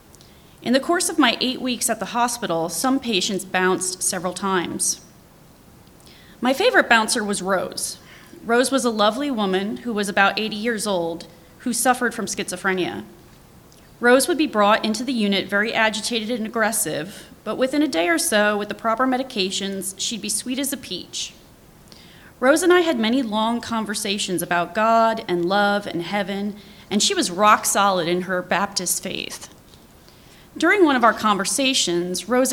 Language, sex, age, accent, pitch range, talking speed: English, female, 30-49, American, 200-265 Hz, 165 wpm